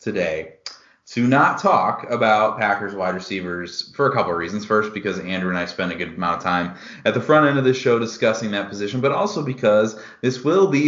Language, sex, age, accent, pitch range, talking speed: English, male, 30-49, American, 95-125 Hz, 220 wpm